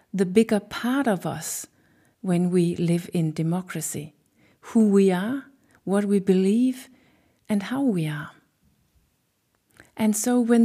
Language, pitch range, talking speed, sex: English, 180-230 Hz, 130 wpm, female